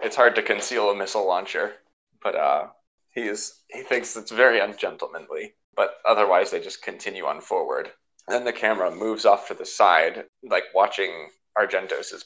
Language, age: English, 20-39